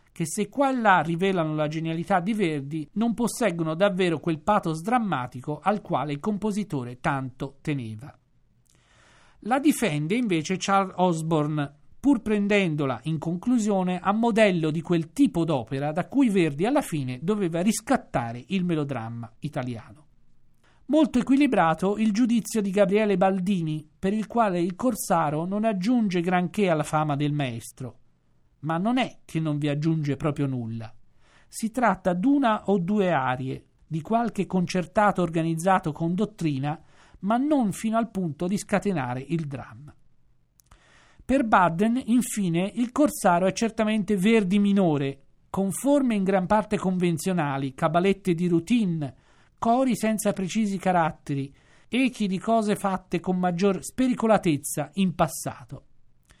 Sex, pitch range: male, 150-215 Hz